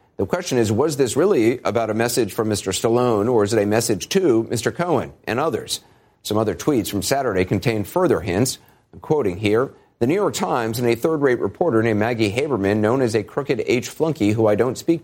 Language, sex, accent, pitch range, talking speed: English, male, American, 100-125 Hz, 215 wpm